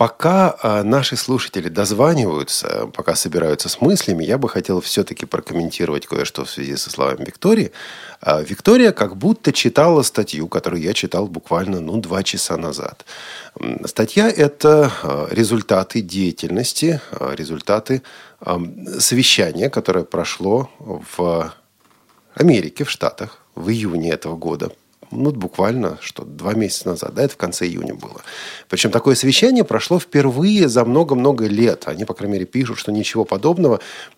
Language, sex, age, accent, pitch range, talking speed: Russian, male, 40-59, native, 90-135 Hz, 135 wpm